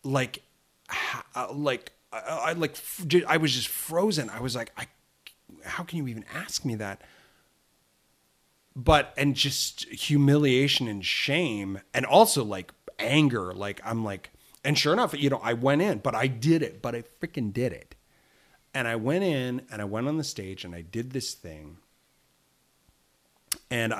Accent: American